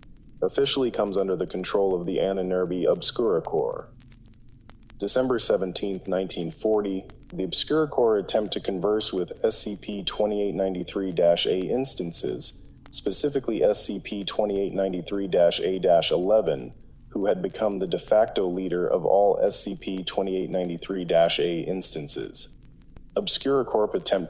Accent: American